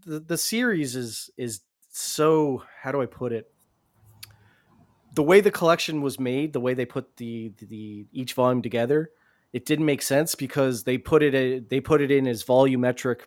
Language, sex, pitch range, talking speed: English, male, 120-145 Hz, 190 wpm